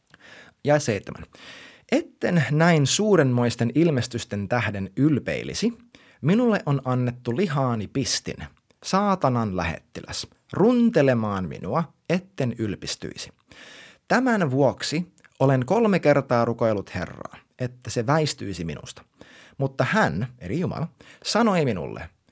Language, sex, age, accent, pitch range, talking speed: Finnish, male, 30-49, native, 110-155 Hz, 95 wpm